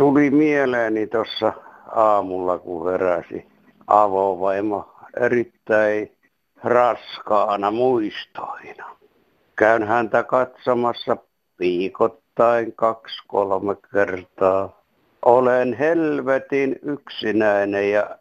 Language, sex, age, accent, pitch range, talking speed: Finnish, male, 60-79, native, 100-120 Hz, 65 wpm